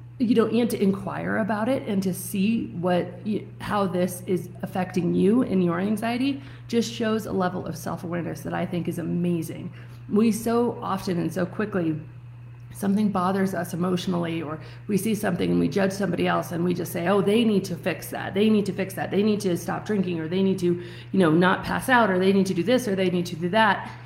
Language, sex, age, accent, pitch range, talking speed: English, female, 30-49, American, 170-220 Hz, 225 wpm